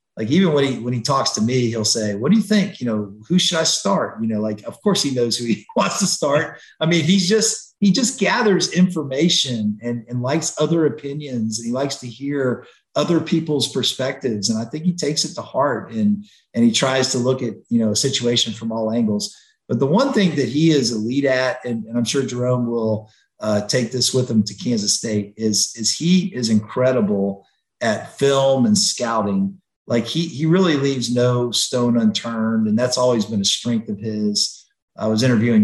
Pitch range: 110-165 Hz